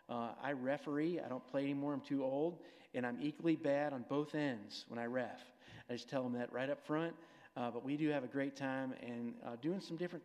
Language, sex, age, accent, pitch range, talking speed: English, male, 50-69, American, 130-165 Hz, 240 wpm